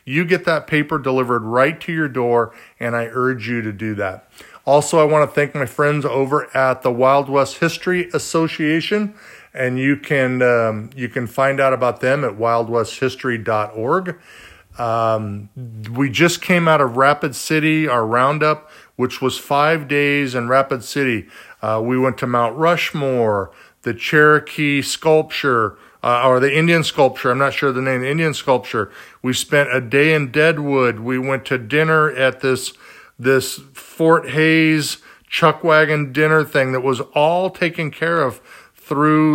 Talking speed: 165 wpm